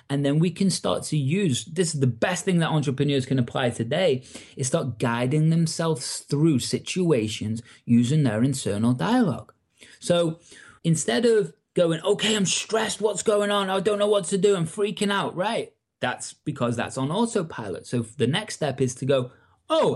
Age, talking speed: 30-49, 180 wpm